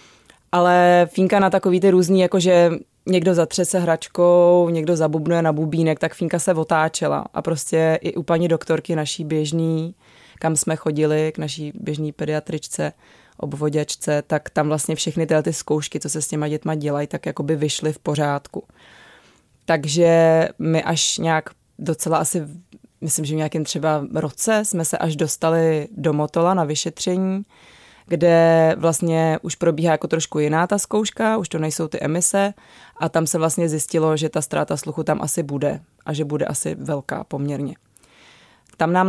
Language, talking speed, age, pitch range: Czech, 165 wpm, 20-39, 155-170 Hz